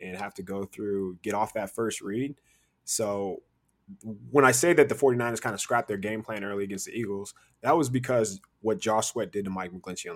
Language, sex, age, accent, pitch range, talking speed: English, male, 20-39, American, 100-125 Hz, 225 wpm